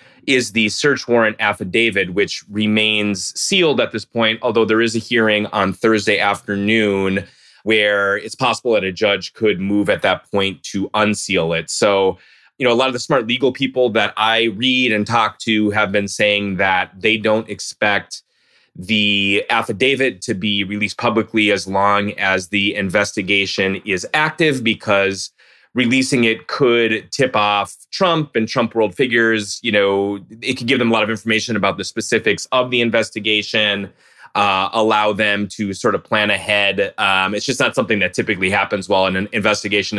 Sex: male